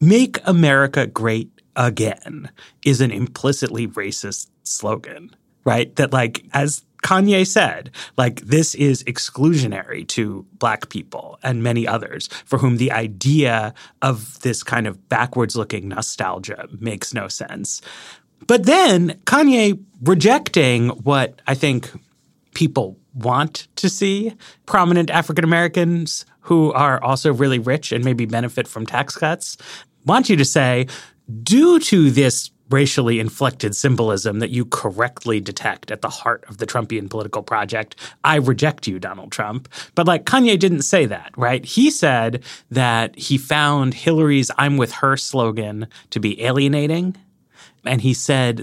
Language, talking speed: English, 140 wpm